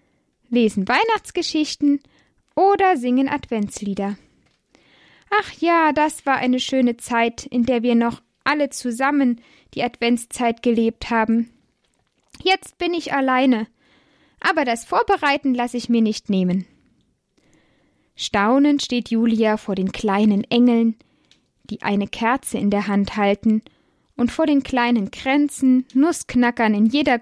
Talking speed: 125 wpm